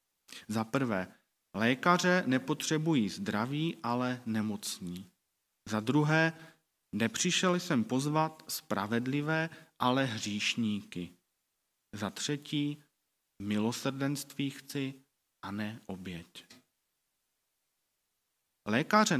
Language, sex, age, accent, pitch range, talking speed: Czech, male, 40-59, native, 110-150 Hz, 70 wpm